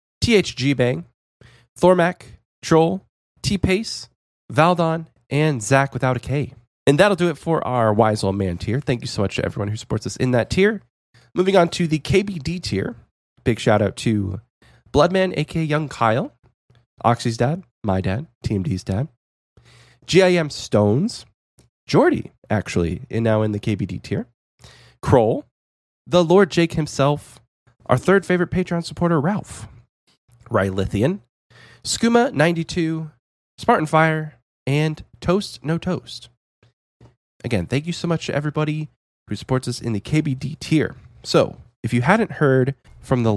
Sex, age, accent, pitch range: male, 20-39, American, 105-155 Hz